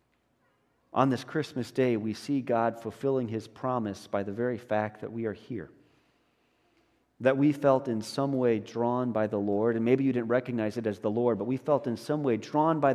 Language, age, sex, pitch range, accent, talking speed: English, 40-59, male, 105-130 Hz, American, 210 wpm